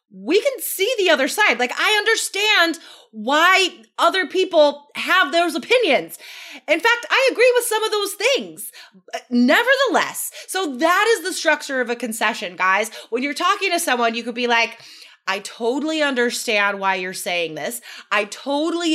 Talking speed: 165 wpm